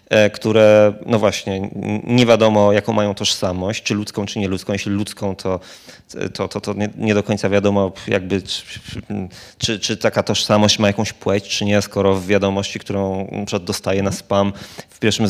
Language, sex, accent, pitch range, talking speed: Polish, male, native, 100-130 Hz, 170 wpm